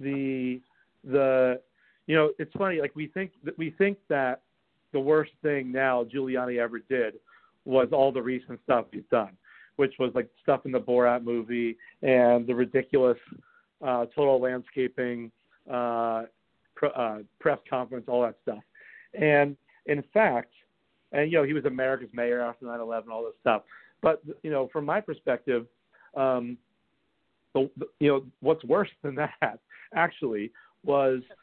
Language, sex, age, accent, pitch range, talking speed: English, male, 50-69, American, 125-150 Hz, 150 wpm